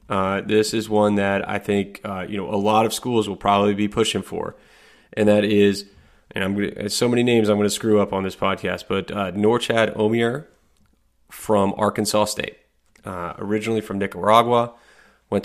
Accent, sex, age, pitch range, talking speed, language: American, male, 30-49, 100-110 Hz, 190 wpm, English